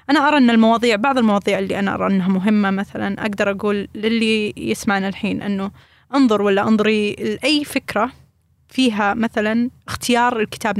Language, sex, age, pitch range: Arabic, female, 20-39, 205-230 Hz